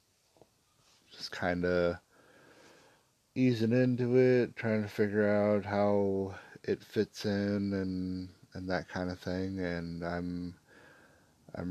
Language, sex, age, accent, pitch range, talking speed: English, male, 30-49, American, 90-105 Hz, 115 wpm